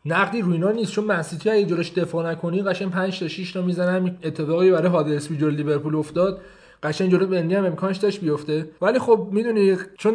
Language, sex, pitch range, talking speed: Persian, male, 150-195 Hz, 195 wpm